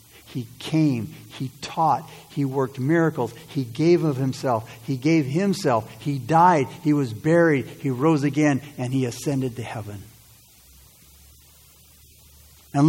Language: English